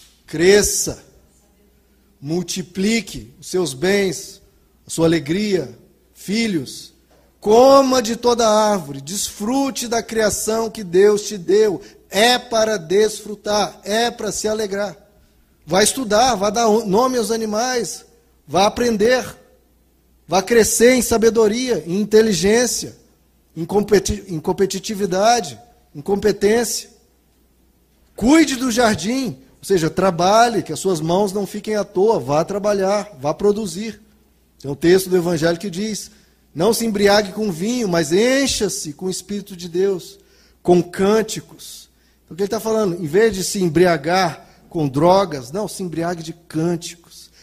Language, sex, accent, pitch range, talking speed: Portuguese, male, Brazilian, 170-215 Hz, 130 wpm